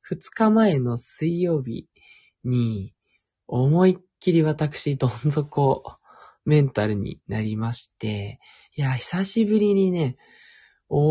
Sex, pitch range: male, 130-185 Hz